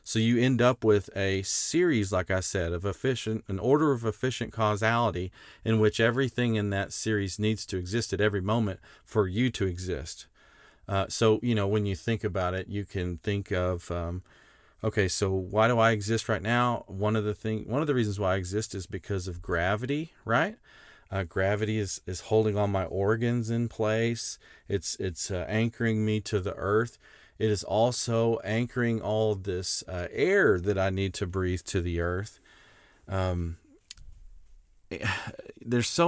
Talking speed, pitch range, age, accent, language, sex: 180 wpm, 95-115 Hz, 40-59, American, English, male